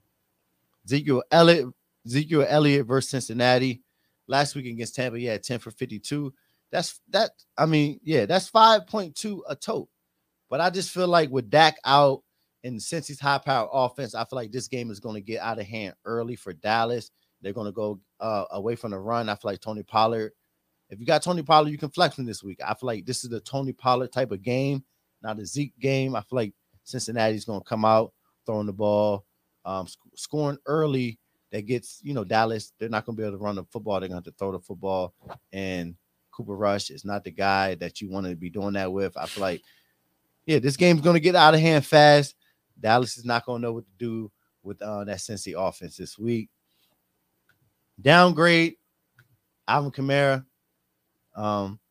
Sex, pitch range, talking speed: male, 100-140 Hz, 200 wpm